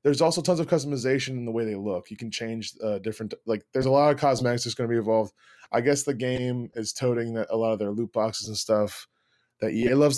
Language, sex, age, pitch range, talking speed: English, male, 20-39, 110-135 Hz, 260 wpm